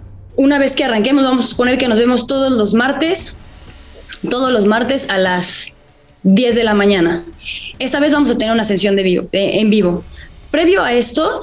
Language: Spanish